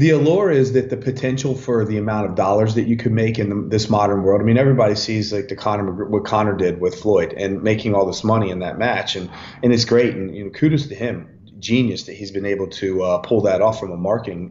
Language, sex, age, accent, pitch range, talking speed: English, male, 30-49, American, 105-125 Hz, 260 wpm